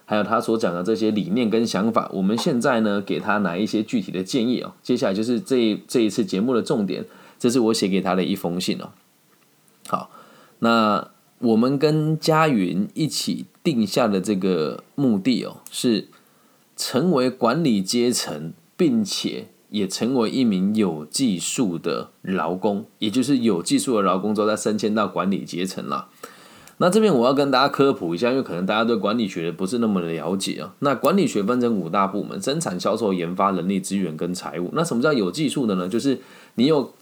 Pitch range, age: 95-150 Hz, 20-39